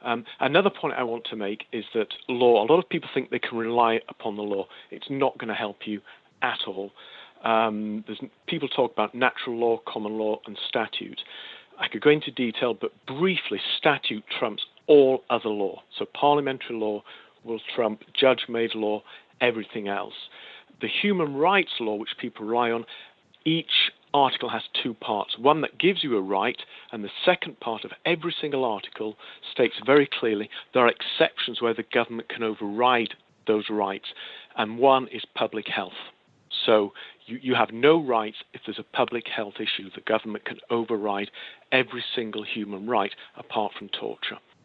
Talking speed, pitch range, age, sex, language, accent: 175 wpm, 110-130 Hz, 40-59, male, English, British